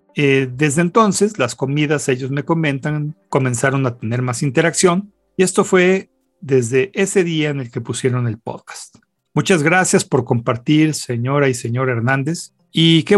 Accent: Mexican